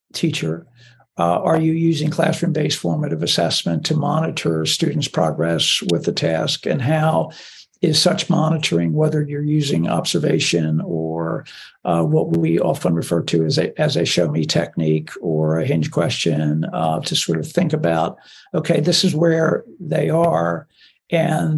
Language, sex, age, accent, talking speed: English, male, 60-79, American, 150 wpm